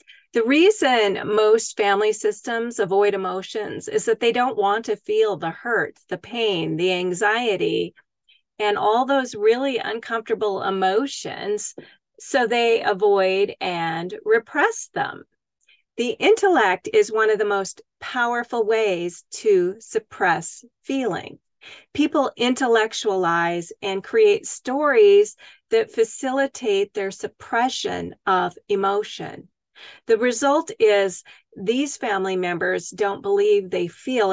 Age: 40-59